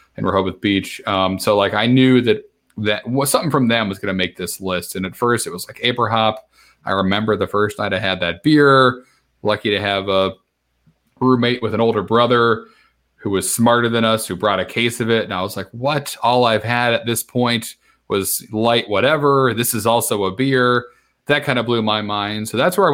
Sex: male